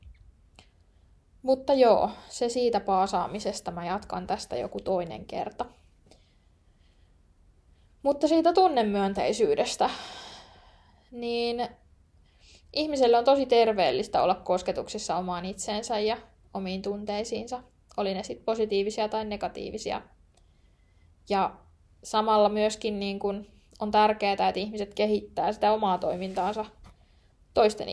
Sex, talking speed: female, 100 wpm